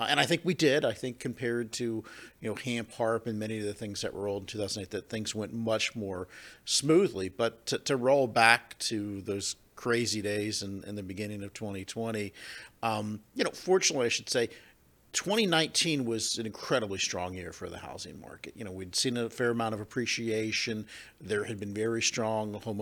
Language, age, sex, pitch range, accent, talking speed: English, 50-69, male, 100-125 Hz, American, 200 wpm